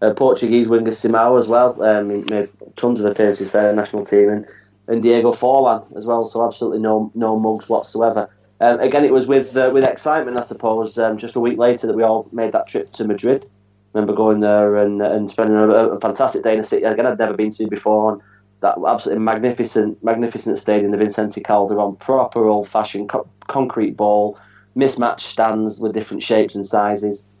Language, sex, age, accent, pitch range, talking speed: English, male, 20-39, British, 105-120 Hz, 205 wpm